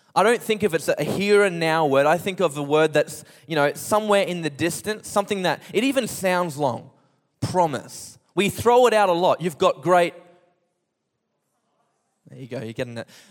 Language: English